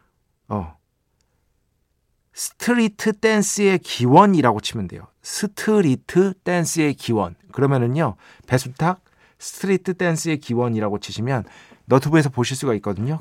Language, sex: Korean, male